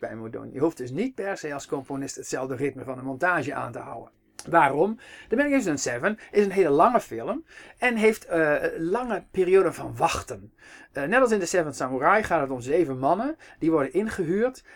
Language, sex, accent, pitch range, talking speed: Dutch, male, Dutch, 130-175 Hz, 205 wpm